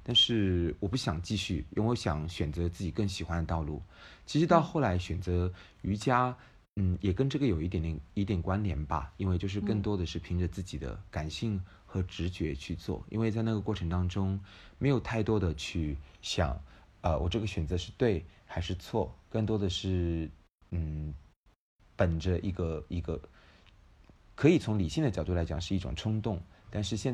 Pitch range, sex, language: 85-105 Hz, male, Chinese